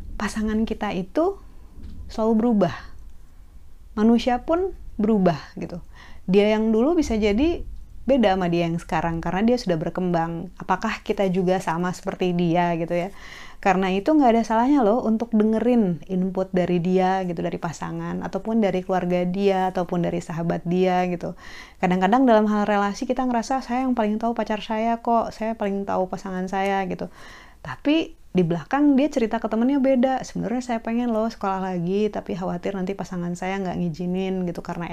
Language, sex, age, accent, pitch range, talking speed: Indonesian, female, 30-49, native, 180-235 Hz, 165 wpm